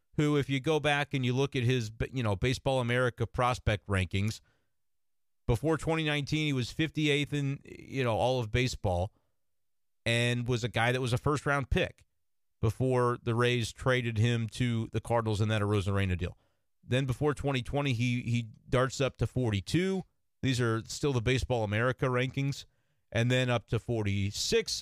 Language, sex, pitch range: English, male, 115-150 Hz